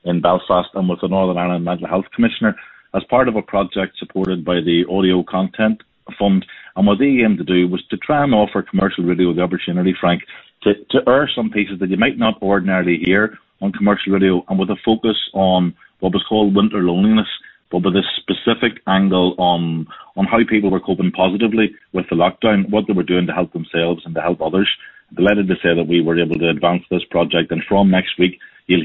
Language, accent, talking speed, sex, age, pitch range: English, Irish, 215 wpm, male, 30-49, 90-100 Hz